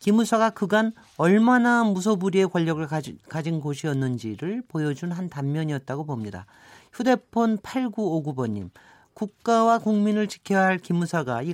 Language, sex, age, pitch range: Korean, male, 40-59, 145-200 Hz